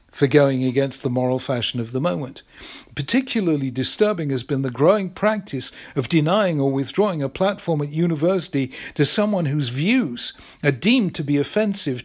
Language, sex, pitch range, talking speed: English, male, 140-180 Hz, 165 wpm